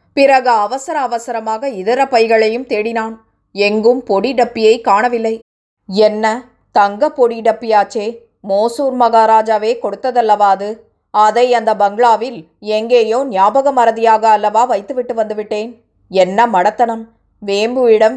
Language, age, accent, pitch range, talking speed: Tamil, 20-39, native, 210-240 Hz, 90 wpm